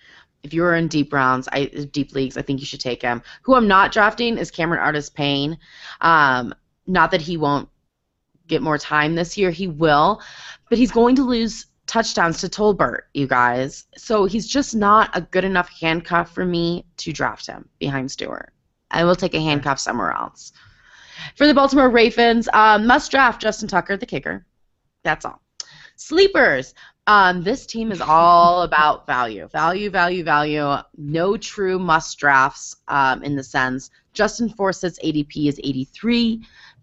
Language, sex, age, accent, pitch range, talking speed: English, female, 20-39, American, 145-215 Hz, 165 wpm